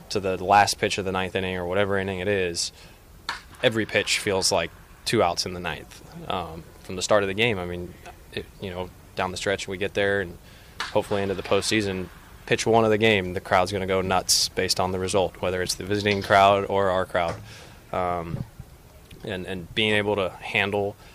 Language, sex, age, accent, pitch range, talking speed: English, male, 20-39, American, 90-100 Hz, 210 wpm